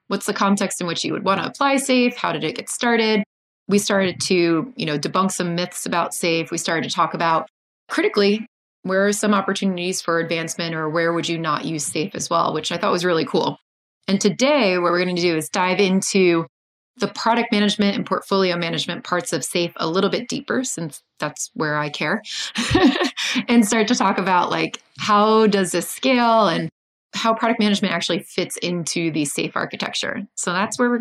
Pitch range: 170-220 Hz